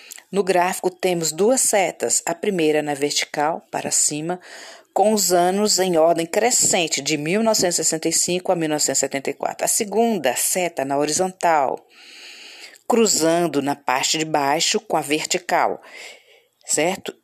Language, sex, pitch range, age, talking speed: Portuguese, female, 155-200 Hz, 40-59, 120 wpm